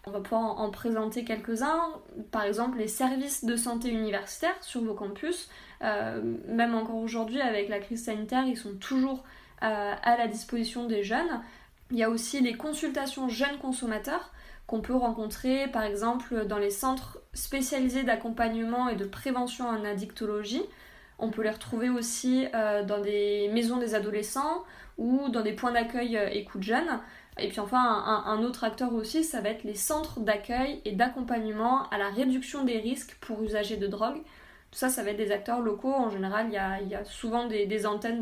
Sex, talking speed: female, 185 wpm